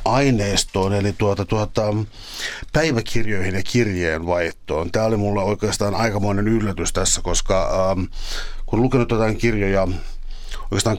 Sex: male